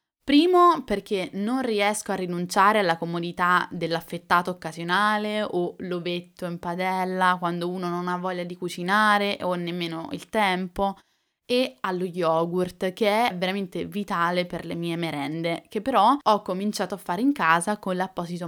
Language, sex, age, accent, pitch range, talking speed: Italian, female, 10-29, native, 170-205 Hz, 150 wpm